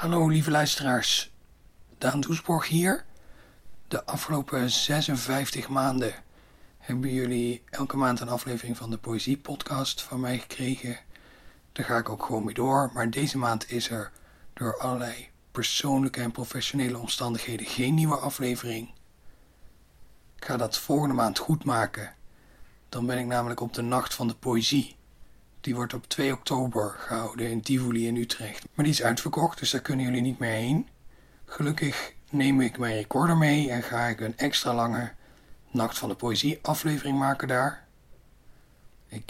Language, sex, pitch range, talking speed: Dutch, male, 115-135 Hz, 155 wpm